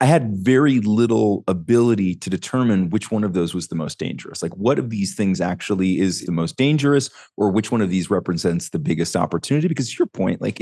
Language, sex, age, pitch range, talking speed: English, male, 30-49, 95-120 Hz, 215 wpm